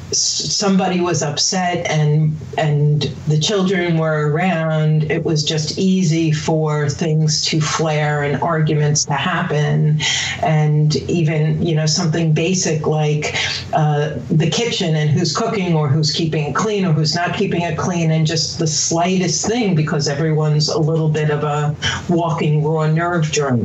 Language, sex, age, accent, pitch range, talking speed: English, female, 40-59, American, 150-165 Hz, 155 wpm